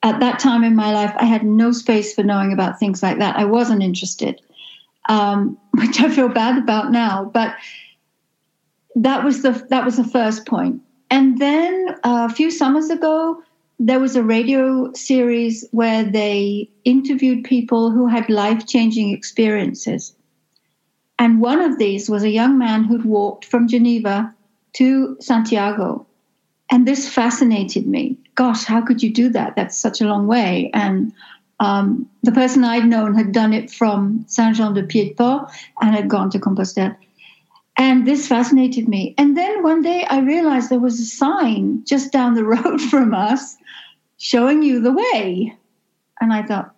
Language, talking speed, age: English, 165 wpm, 60-79